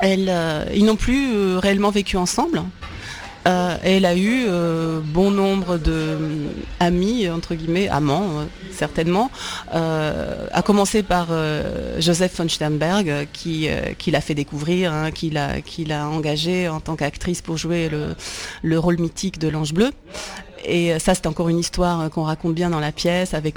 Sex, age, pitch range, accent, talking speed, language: female, 30-49, 155-180 Hz, French, 175 wpm, French